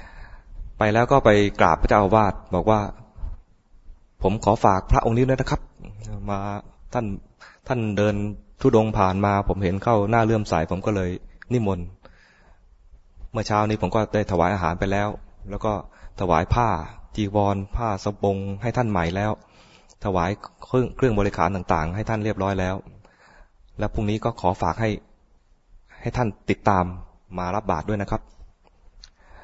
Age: 20-39